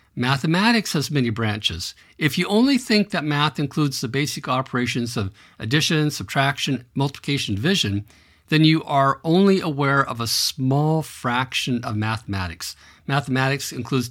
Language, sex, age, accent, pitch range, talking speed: English, male, 50-69, American, 110-150 Hz, 135 wpm